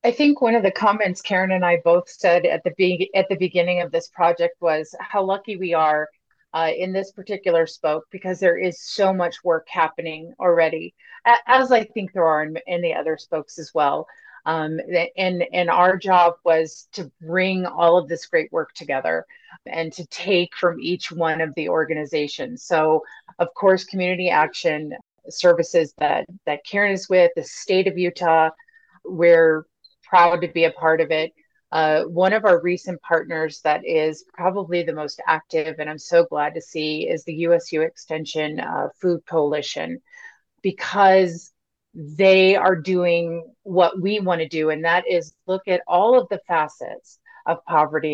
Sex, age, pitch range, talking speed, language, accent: female, 30-49, 160-195 Hz, 175 wpm, English, American